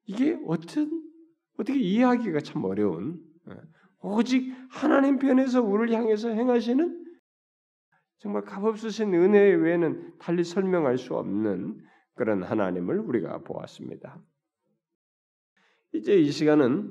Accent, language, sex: native, Korean, male